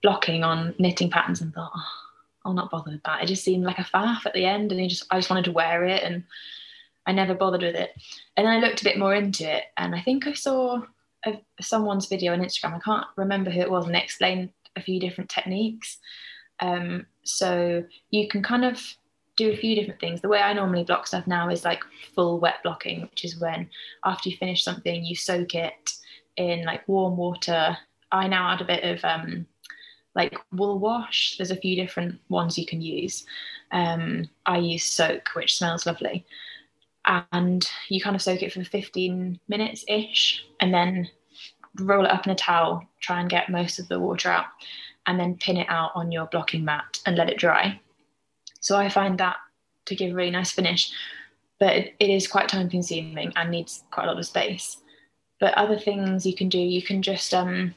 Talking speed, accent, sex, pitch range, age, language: 210 wpm, British, female, 175-200 Hz, 20-39, English